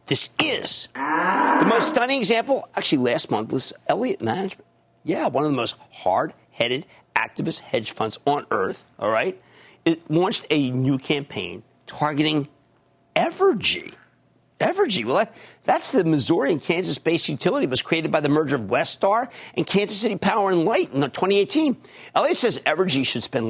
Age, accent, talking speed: 50-69, American, 160 wpm